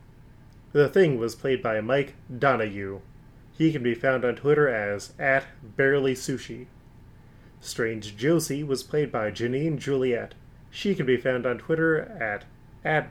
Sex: male